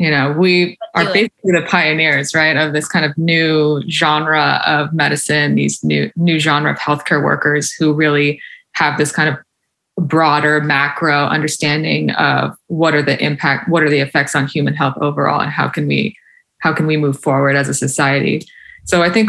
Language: English